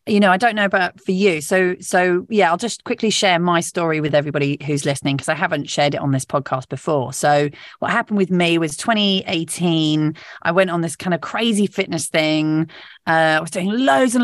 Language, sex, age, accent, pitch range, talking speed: English, female, 30-49, British, 155-215 Hz, 220 wpm